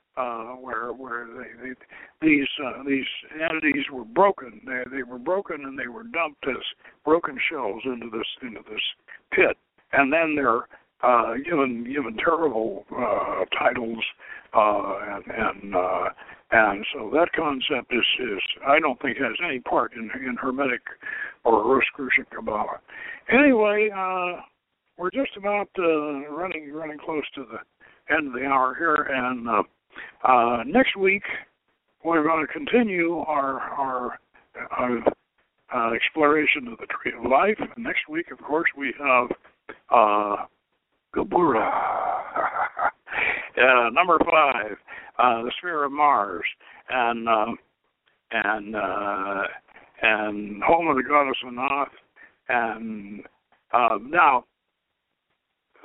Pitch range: 125-195 Hz